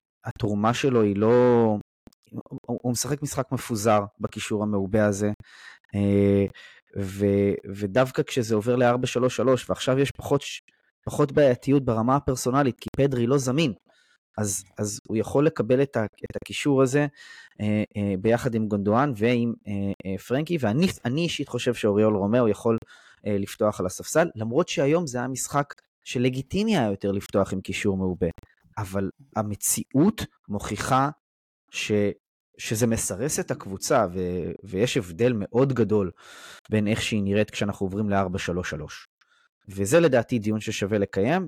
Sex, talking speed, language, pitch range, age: male, 130 wpm, Hebrew, 100-130 Hz, 20-39